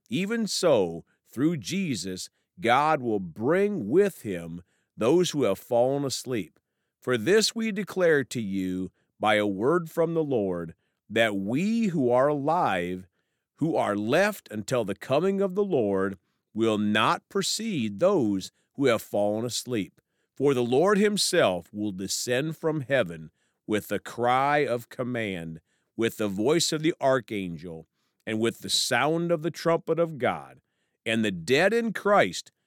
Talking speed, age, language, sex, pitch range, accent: 150 wpm, 40-59, English, male, 100-160 Hz, American